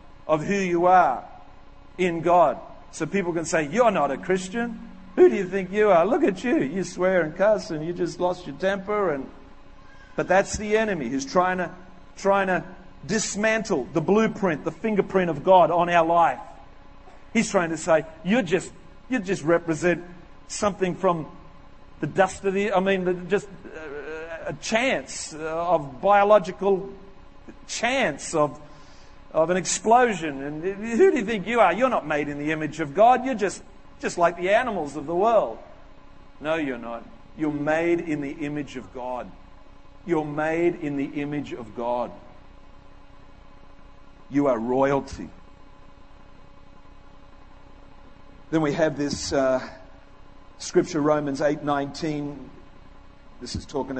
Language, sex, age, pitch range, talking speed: English, male, 50-69, 140-195 Hz, 150 wpm